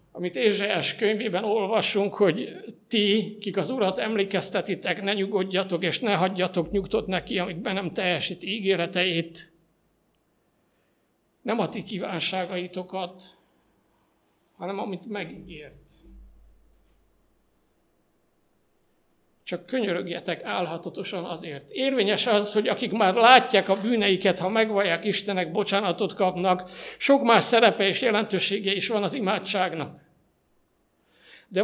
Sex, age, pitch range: male, 60-79, 180-220 Hz